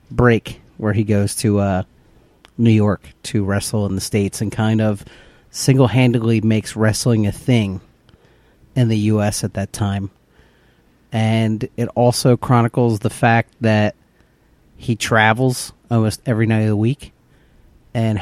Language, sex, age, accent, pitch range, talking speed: English, male, 40-59, American, 100-115 Hz, 140 wpm